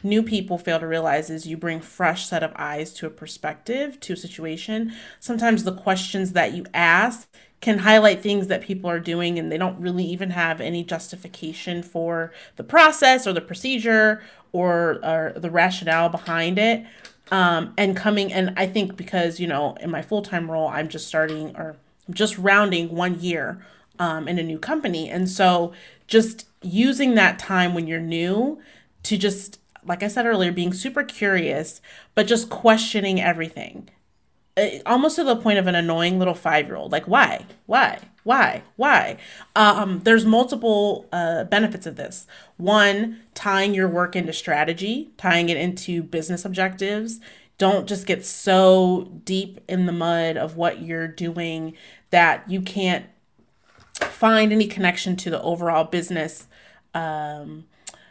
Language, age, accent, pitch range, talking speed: English, 30-49, American, 170-210 Hz, 160 wpm